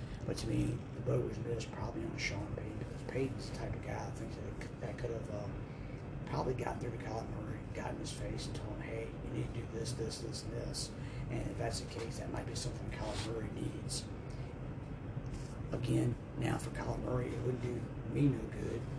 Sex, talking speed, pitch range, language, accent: male, 220 wpm, 115-130 Hz, English, American